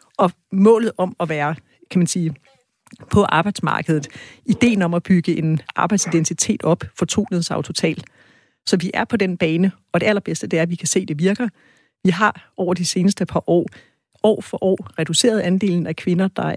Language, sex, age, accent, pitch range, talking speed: Danish, female, 40-59, native, 165-195 Hz, 195 wpm